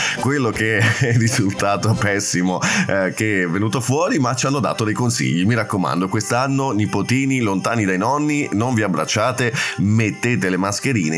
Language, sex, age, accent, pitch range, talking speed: Italian, male, 30-49, native, 95-120 Hz, 155 wpm